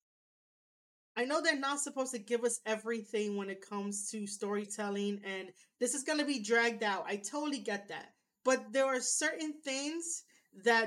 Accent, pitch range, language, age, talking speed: American, 205-250 Hz, English, 30-49, 175 wpm